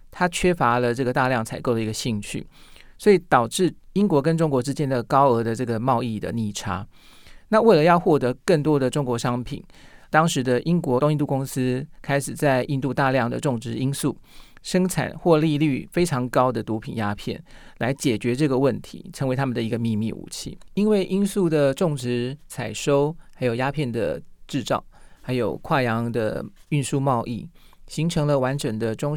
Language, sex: Chinese, male